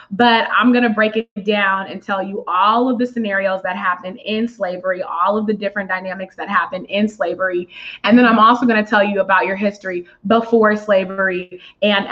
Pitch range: 195-245 Hz